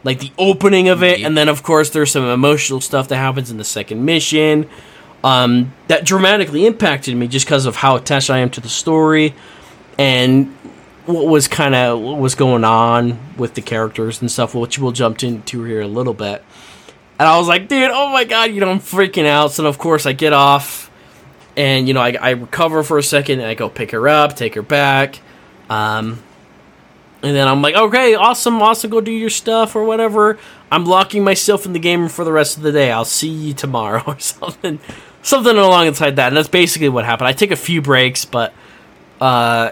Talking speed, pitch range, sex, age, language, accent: 215 wpm, 120-160 Hz, male, 20-39, English, American